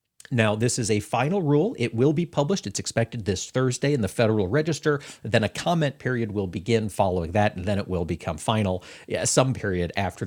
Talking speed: 205 wpm